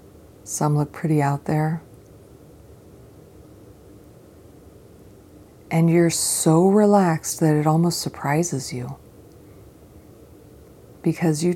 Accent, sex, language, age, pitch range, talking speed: American, female, English, 40-59, 100-160 Hz, 85 wpm